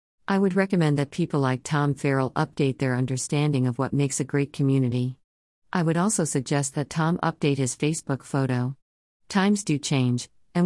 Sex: female